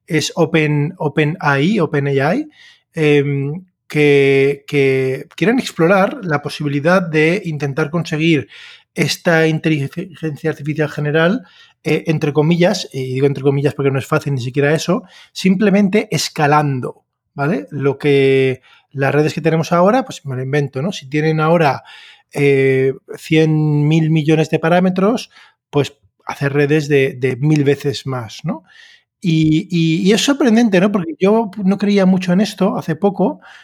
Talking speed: 145 wpm